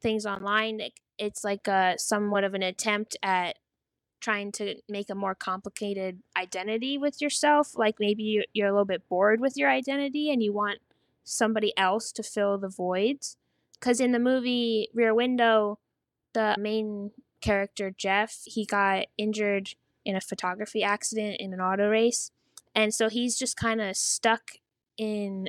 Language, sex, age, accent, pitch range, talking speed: English, female, 10-29, American, 200-235 Hz, 160 wpm